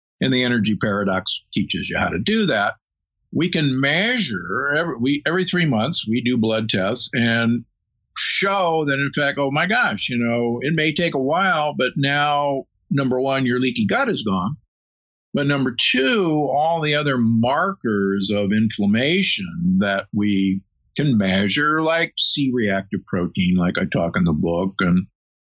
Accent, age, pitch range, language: American, 50-69, 110-150 Hz, English